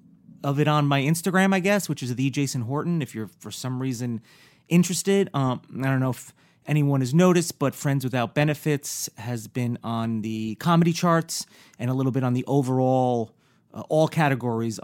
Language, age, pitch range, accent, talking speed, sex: English, 30-49, 125-160 Hz, American, 185 wpm, male